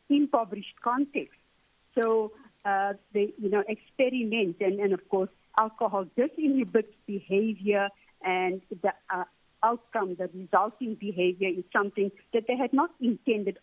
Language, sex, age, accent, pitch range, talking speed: English, female, 60-79, Indian, 195-245 Hz, 125 wpm